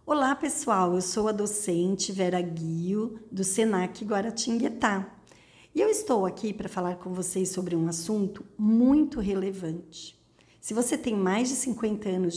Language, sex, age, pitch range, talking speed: Portuguese, female, 50-69, 195-265 Hz, 150 wpm